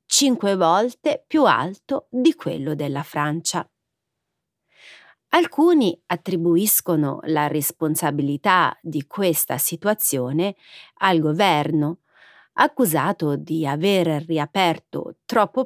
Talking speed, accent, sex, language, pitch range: 85 wpm, native, female, Italian, 155-230 Hz